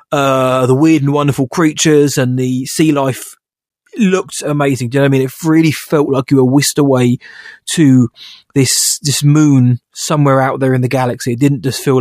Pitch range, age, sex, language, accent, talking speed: 130-160 Hz, 20-39, male, English, British, 200 wpm